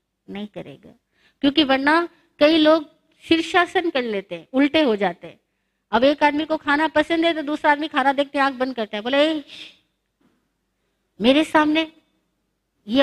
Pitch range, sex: 215-300 Hz, female